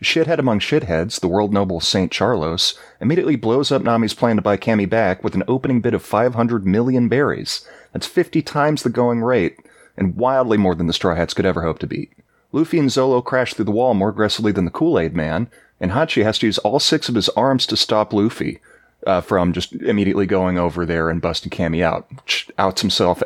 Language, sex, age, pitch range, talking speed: English, male, 30-49, 95-130 Hz, 215 wpm